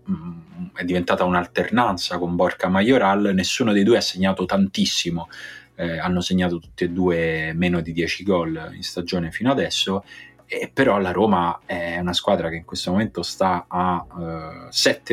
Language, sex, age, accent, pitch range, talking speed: Italian, male, 30-49, native, 85-100 Hz, 160 wpm